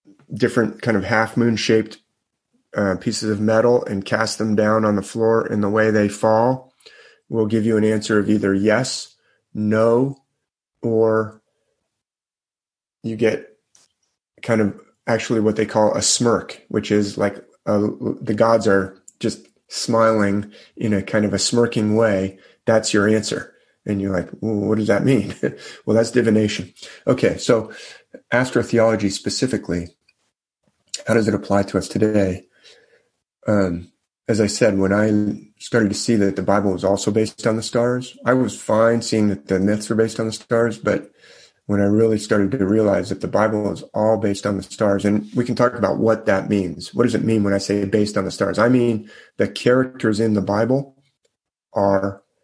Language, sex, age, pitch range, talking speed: English, male, 30-49, 100-115 Hz, 180 wpm